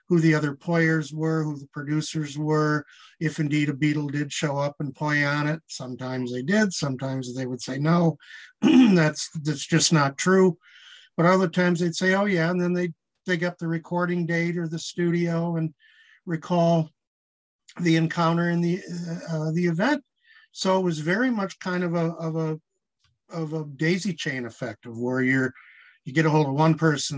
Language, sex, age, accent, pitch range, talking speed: English, male, 50-69, American, 140-170 Hz, 190 wpm